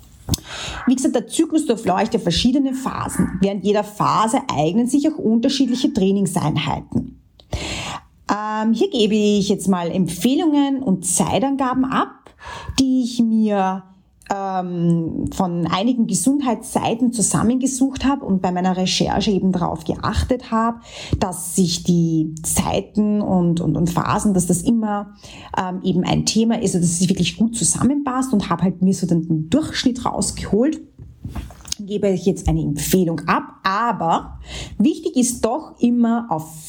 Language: German